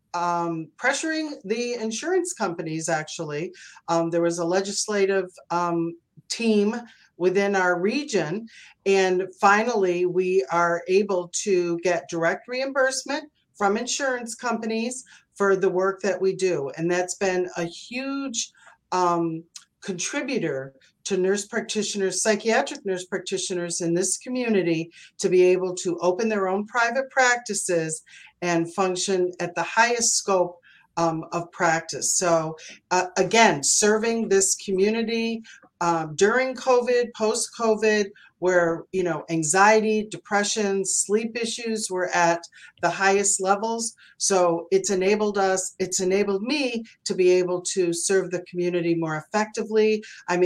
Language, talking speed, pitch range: English, 130 wpm, 175-220 Hz